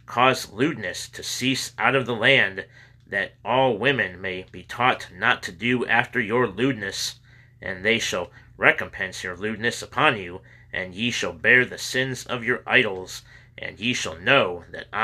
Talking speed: 170 wpm